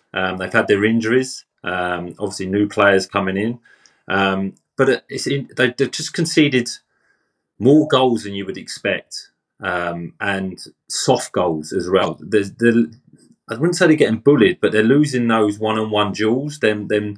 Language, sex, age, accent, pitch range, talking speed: English, male, 30-49, British, 95-120 Hz, 150 wpm